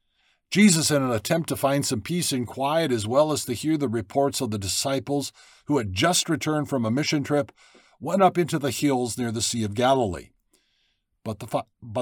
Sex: male